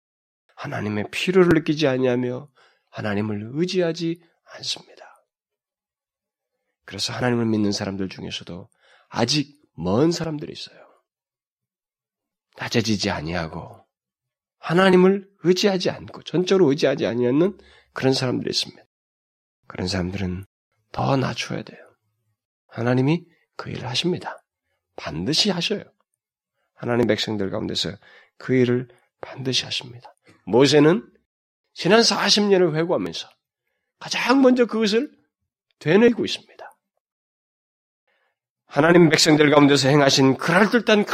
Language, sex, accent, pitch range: Korean, male, native, 120-185 Hz